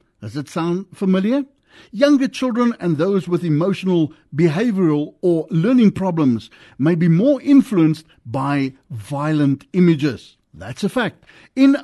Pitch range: 155-230 Hz